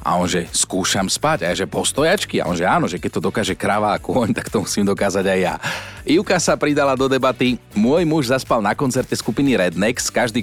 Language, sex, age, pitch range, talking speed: Slovak, male, 40-59, 95-135 Hz, 205 wpm